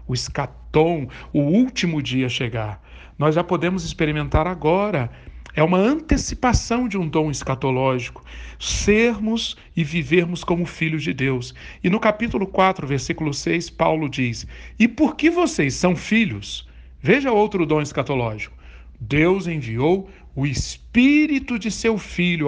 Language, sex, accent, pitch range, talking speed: Portuguese, male, Brazilian, 130-190 Hz, 135 wpm